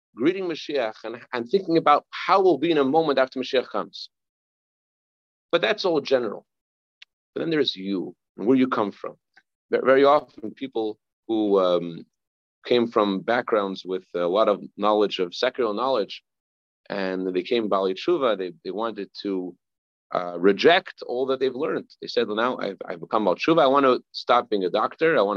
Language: English